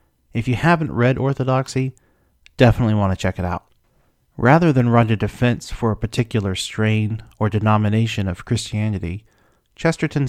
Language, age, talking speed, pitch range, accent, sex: English, 40-59, 145 wpm, 100-125 Hz, American, male